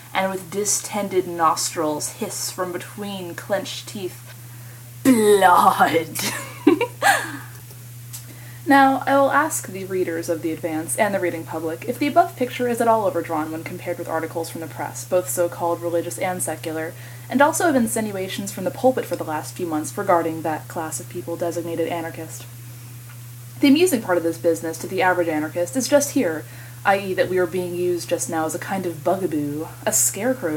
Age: 20-39